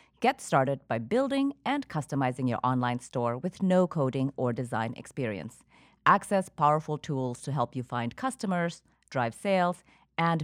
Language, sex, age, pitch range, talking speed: English, female, 30-49, 130-200 Hz, 150 wpm